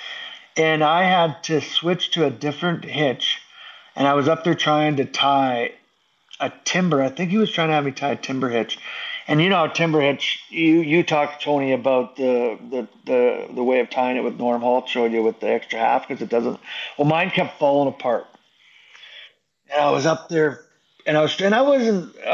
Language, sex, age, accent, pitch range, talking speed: English, male, 50-69, American, 130-165 Hz, 210 wpm